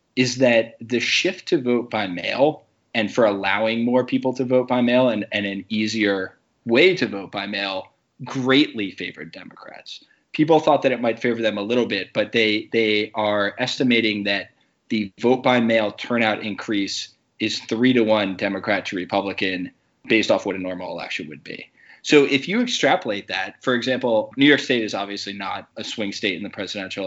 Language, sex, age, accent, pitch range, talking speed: English, male, 20-39, American, 100-125 Hz, 190 wpm